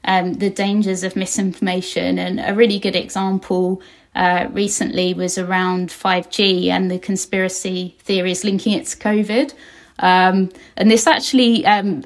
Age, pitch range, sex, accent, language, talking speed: 20-39, 185-205 Hz, female, British, English, 140 wpm